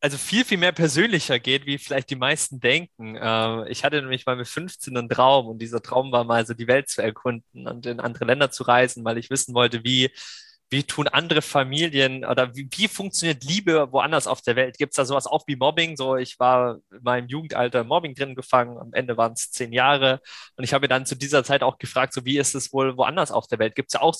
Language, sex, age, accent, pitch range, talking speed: German, male, 20-39, German, 125-150 Hz, 240 wpm